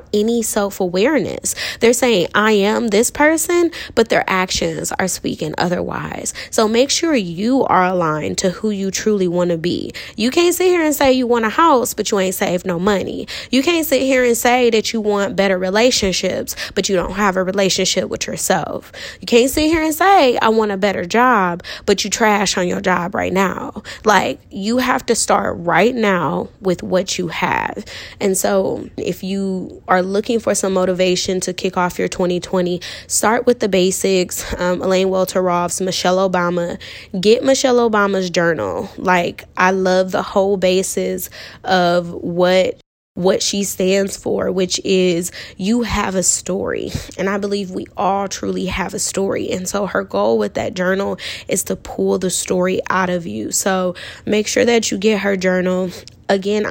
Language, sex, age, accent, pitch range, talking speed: English, female, 10-29, American, 185-220 Hz, 180 wpm